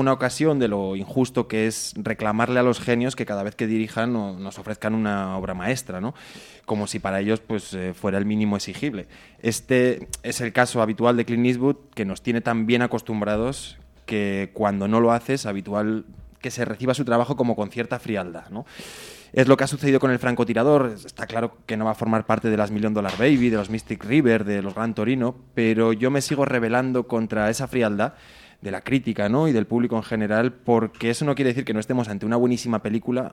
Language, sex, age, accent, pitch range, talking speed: Spanish, male, 20-39, Spanish, 105-125 Hz, 215 wpm